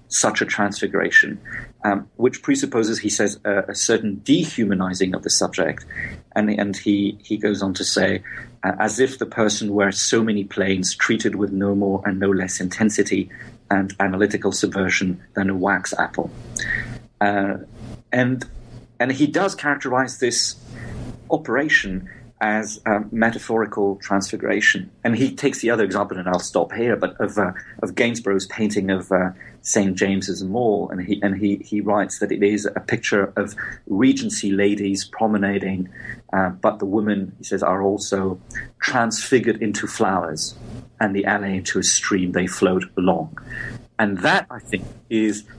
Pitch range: 95-115 Hz